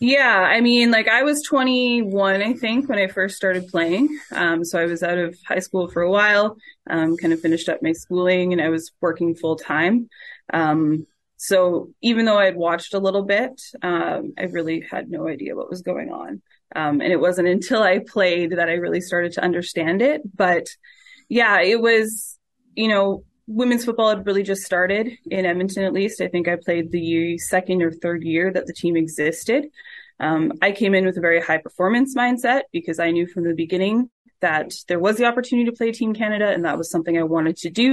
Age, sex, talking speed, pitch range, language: 20-39, female, 210 wpm, 170-230 Hz, English